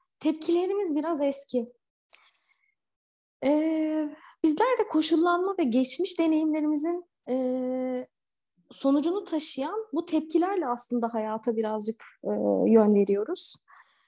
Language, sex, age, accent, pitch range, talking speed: Turkish, female, 30-49, native, 245-340 Hz, 90 wpm